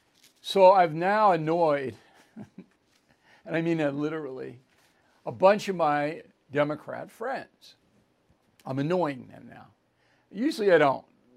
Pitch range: 140-185 Hz